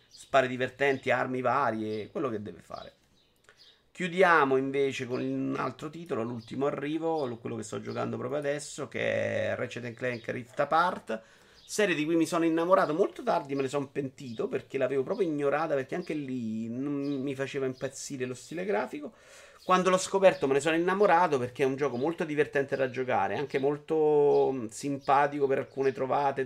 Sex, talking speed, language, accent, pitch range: male, 170 wpm, Italian, native, 110-145 Hz